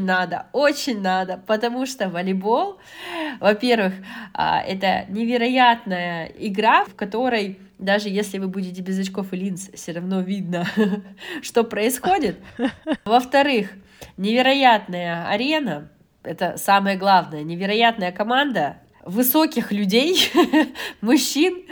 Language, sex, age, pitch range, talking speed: Russian, female, 20-39, 175-230 Hz, 100 wpm